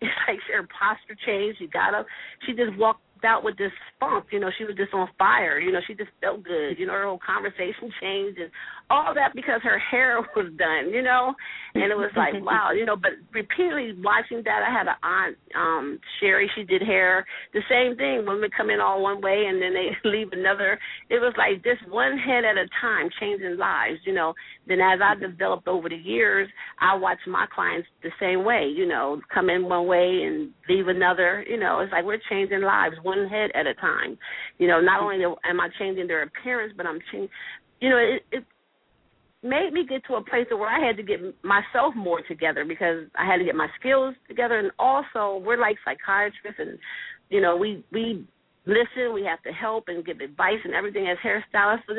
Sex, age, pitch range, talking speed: female, 40-59, 185-245 Hz, 215 wpm